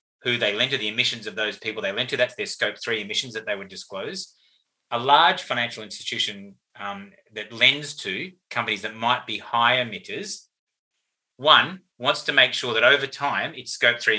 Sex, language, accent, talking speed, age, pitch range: male, English, Australian, 195 wpm, 30-49, 110-140 Hz